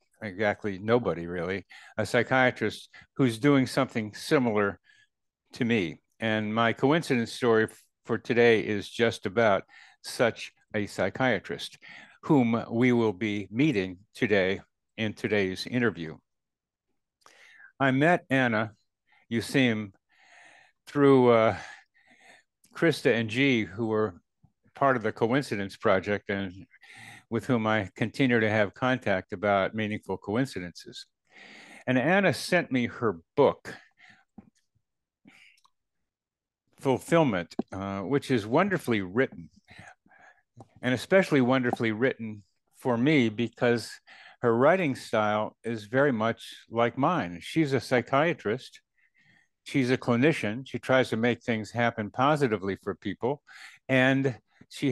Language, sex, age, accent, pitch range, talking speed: English, male, 60-79, American, 105-130 Hz, 115 wpm